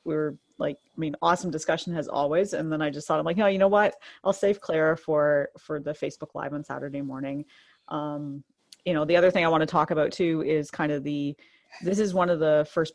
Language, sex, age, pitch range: English, female, 30-49, 145-165 Hz